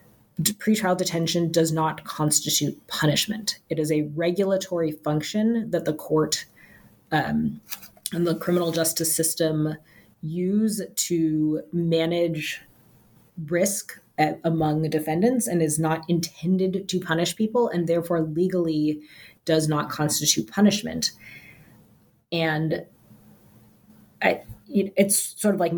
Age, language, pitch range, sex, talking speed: 30-49, English, 155-185 Hz, female, 110 wpm